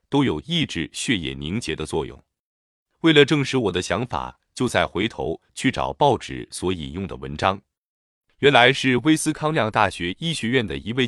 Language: Chinese